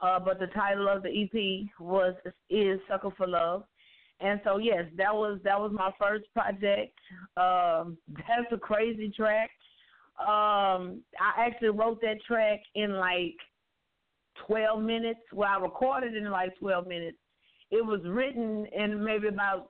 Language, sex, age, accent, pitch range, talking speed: English, female, 30-49, American, 190-230 Hz, 150 wpm